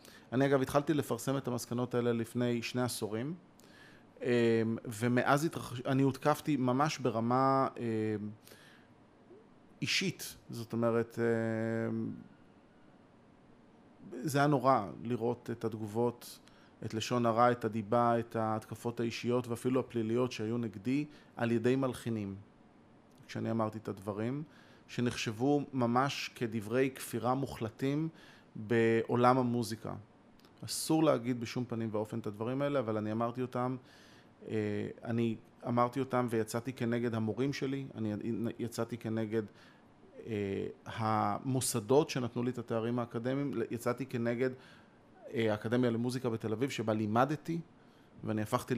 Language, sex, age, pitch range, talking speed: Hebrew, male, 30-49, 115-130 Hz, 110 wpm